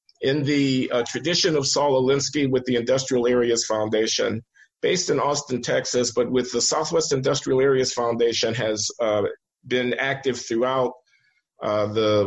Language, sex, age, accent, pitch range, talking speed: English, male, 50-69, American, 110-130 Hz, 145 wpm